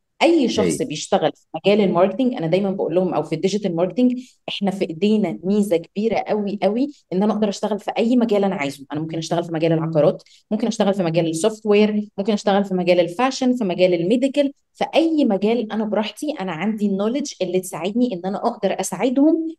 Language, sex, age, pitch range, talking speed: English, female, 20-39, 180-225 Hz, 195 wpm